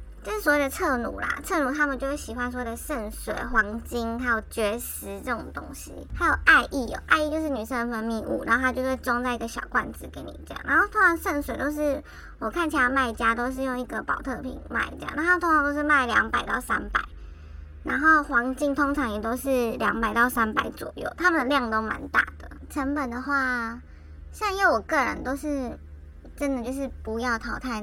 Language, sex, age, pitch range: Chinese, male, 20-39, 225-285 Hz